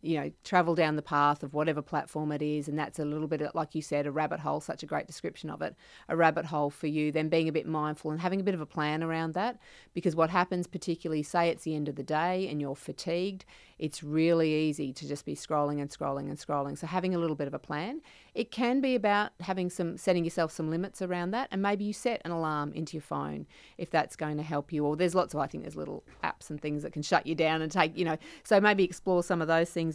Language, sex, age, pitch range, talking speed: English, female, 30-49, 150-185 Hz, 270 wpm